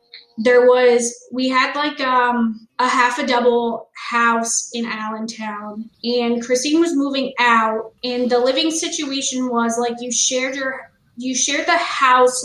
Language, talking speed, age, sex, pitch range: English, 150 wpm, 20-39, female, 230-260 Hz